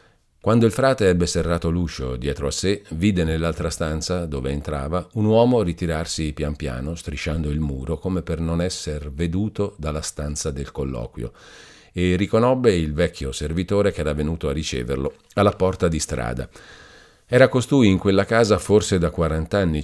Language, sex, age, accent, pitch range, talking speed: Italian, male, 50-69, native, 75-100 Hz, 165 wpm